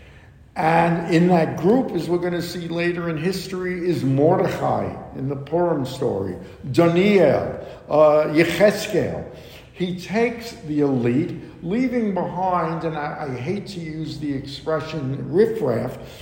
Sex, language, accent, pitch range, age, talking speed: male, English, American, 145-180 Hz, 60-79, 125 wpm